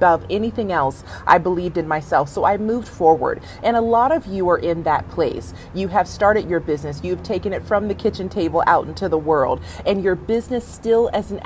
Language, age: English, 30-49